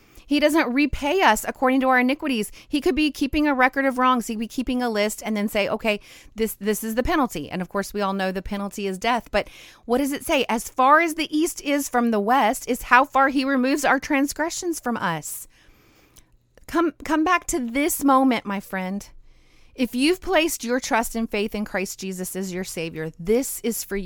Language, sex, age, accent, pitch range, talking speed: English, female, 30-49, American, 200-265 Hz, 215 wpm